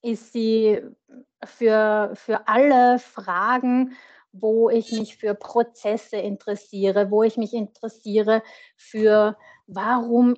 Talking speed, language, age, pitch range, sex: 105 wpm, German, 30-49, 205-235 Hz, female